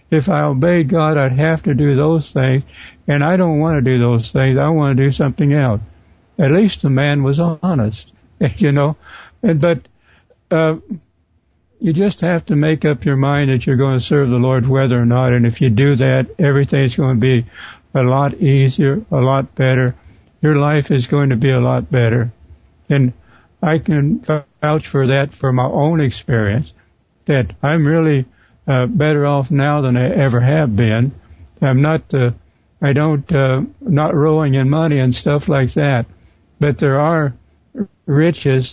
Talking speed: 180 wpm